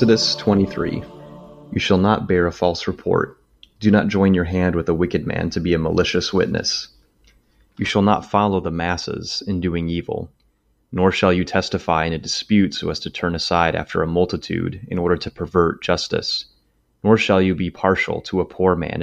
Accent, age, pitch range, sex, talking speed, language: American, 30-49, 85-95 Hz, male, 190 wpm, English